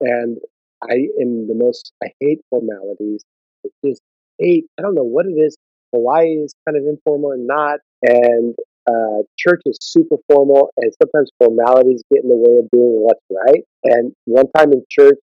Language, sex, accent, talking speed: English, male, American, 180 wpm